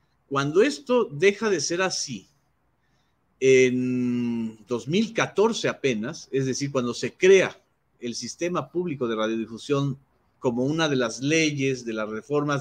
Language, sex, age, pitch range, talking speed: Spanish, male, 40-59, 125-190 Hz, 130 wpm